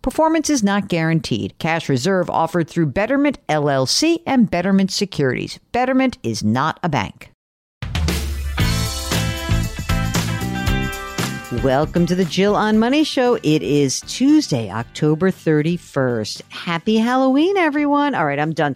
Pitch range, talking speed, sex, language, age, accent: 145-225 Hz, 120 wpm, female, English, 50-69, American